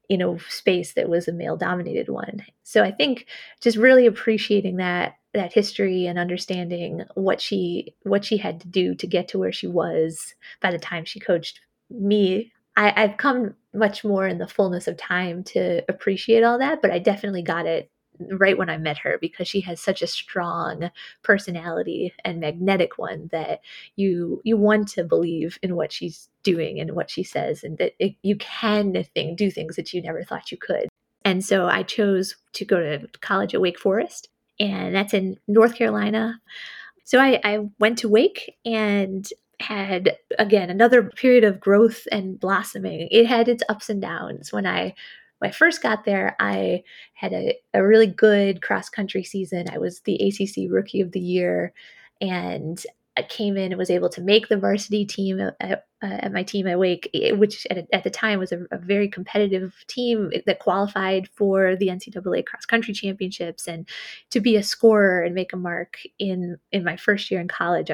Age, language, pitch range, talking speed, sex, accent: 20-39, English, 180-215 Hz, 190 wpm, female, American